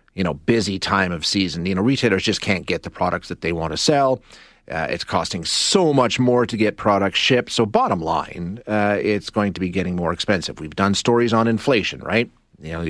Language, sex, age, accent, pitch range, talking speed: English, male, 40-59, American, 100-125 Hz, 225 wpm